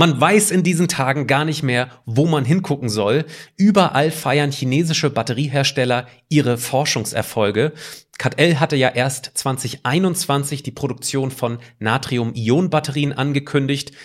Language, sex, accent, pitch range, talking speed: German, male, German, 125-160 Hz, 125 wpm